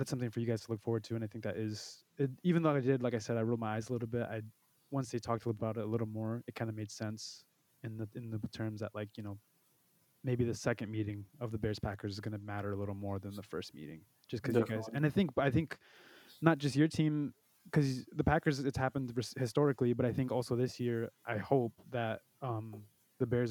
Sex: male